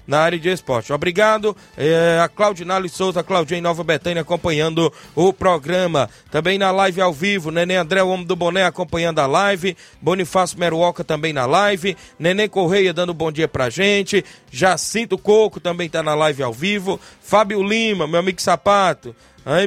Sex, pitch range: male, 150-190 Hz